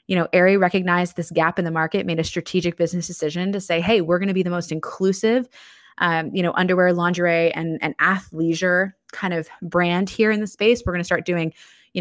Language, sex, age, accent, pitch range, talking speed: English, female, 20-39, American, 175-225 Hz, 225 wpm